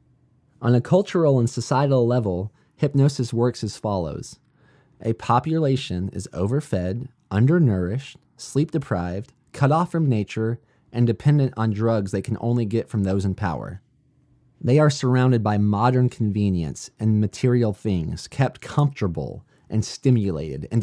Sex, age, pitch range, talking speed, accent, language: male, 20-39, 100-135 Hz, 135 wpm, American, English